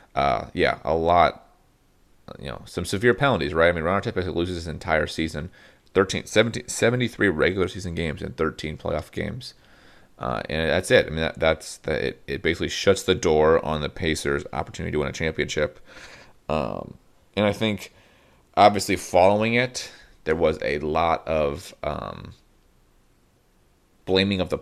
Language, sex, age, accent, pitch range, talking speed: English, male, 30-49, American, 80-100 Hz, 160 wpm